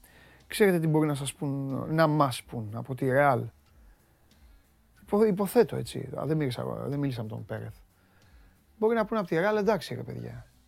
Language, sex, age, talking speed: Greek, male, 30-49, 175 wpm